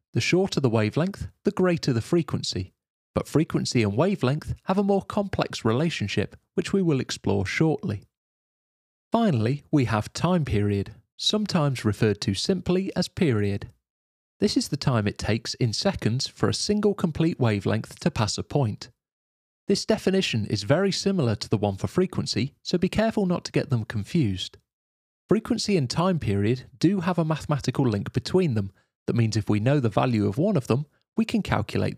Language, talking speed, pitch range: English, 175 wpm, 105-170 Hz